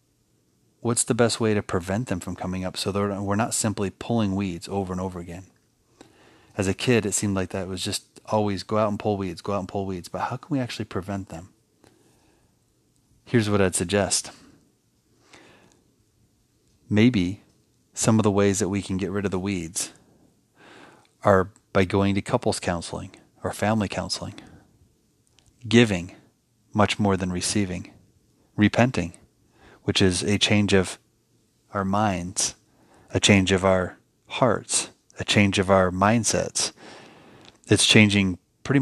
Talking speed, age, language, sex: 155 wpm, 30-49, English, male